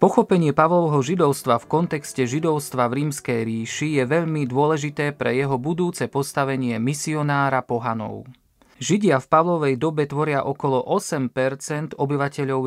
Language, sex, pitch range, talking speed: Slovak, male, 125-150 Hz, 125 wpm